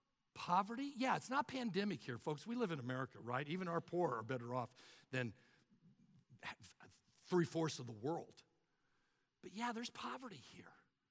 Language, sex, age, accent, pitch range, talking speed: English, male, 60-79, American, 145-210 Hz, 150 wpm